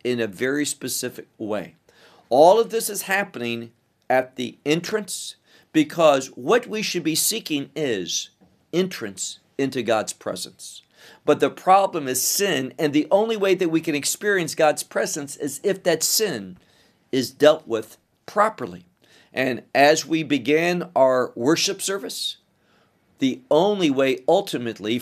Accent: American